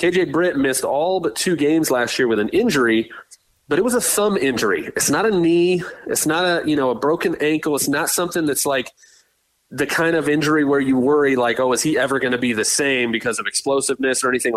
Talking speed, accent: 235 wpm, American